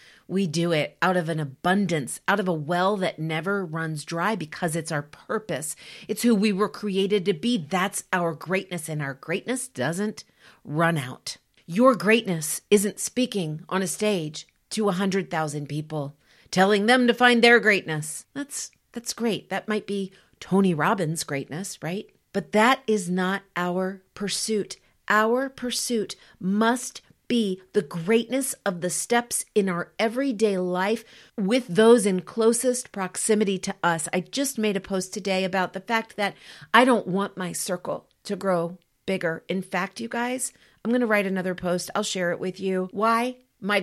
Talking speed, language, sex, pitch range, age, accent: 170 wpm, English, female, 175-215 Hz, 40-59, American